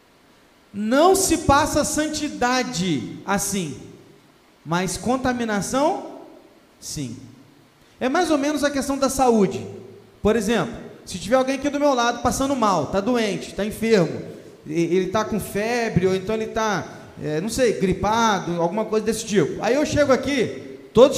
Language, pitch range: Portuguese, 220-300 Hz